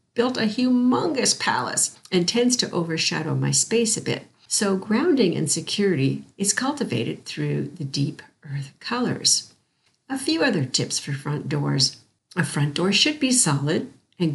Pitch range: 145-230 Hz